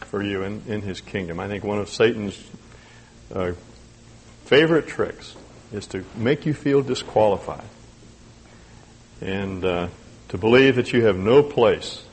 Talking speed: 140 wpm